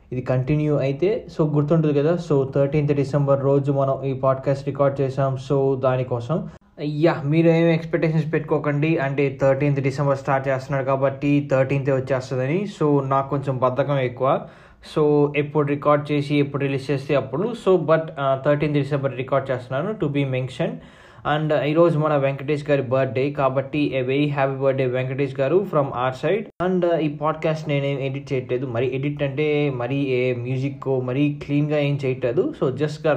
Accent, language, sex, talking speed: native, Telugu, male, 155 wpm